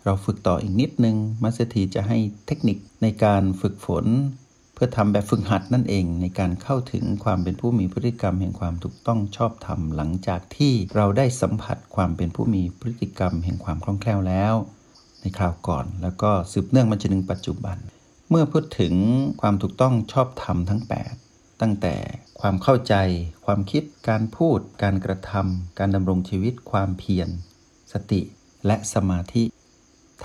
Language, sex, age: Thai, male, 60-79